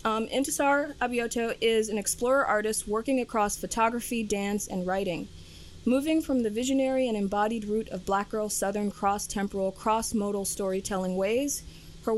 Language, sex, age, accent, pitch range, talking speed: English, female, 20-39, American, 190-235 Hz, 145 wpm